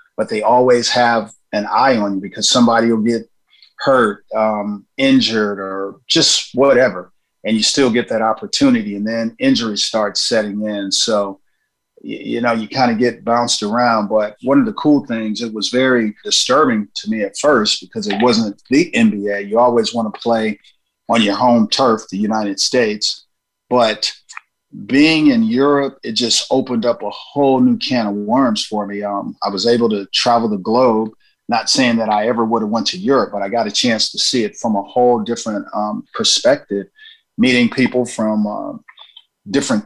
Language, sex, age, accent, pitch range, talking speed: English, male, 40-59, American, 105-125 Hz, 185 wpm